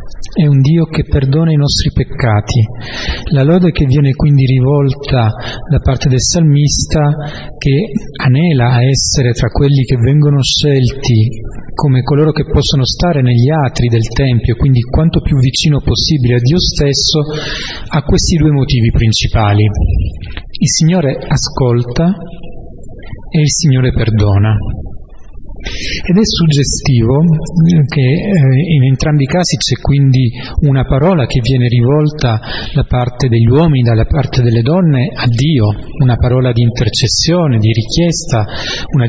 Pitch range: 120-150 Hz